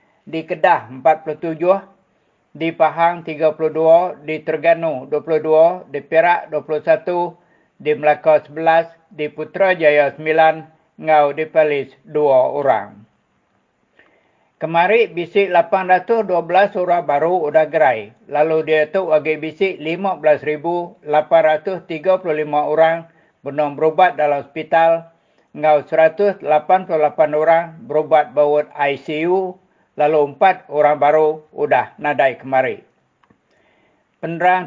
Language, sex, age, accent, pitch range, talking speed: English, male, 50-69, Indonesian, 155-180 Hz, 95 wpm